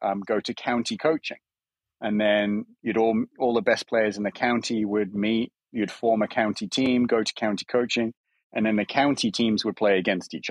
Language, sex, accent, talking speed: English, male, British, 205 wpm